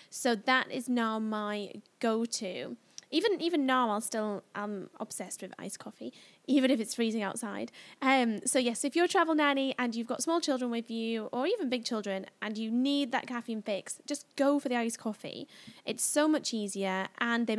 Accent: British